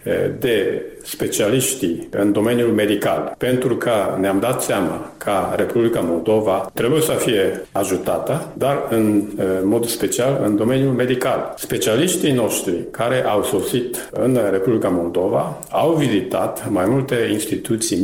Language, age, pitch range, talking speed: Romanian, 50-69, 105-140 Hz, 125 wpm